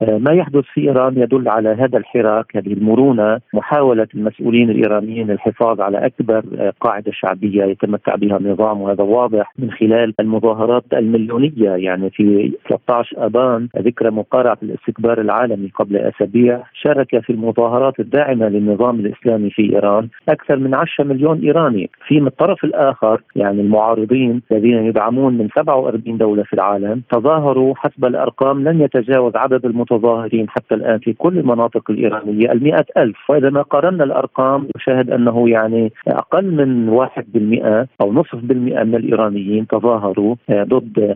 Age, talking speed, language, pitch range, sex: 40-59, 140 wpm, Arabic, 110-130 Hz, male